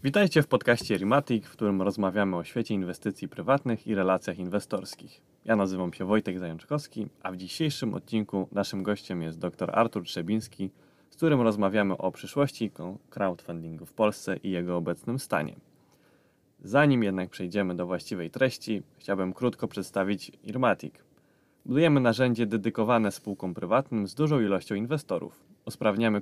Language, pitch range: Polish, 95-115 Hz